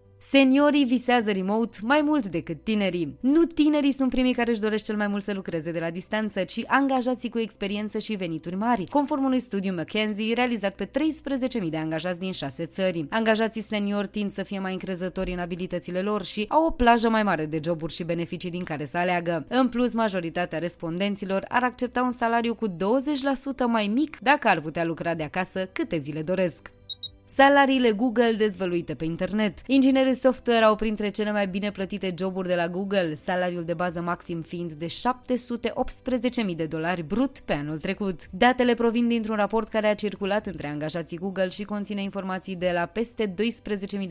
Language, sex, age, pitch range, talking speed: Romanian, female, 20-39, 175-235 Hz, 180 wpm